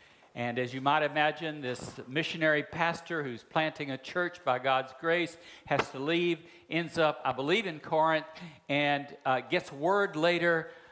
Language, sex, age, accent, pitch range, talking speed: English, male, 60-79, American, 135-170 Hz, 160 wpm